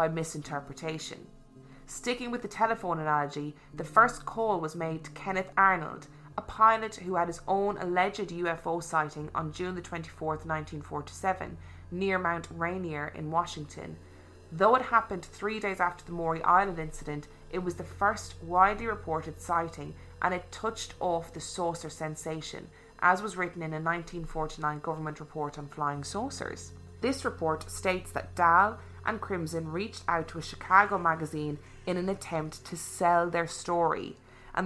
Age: 20-39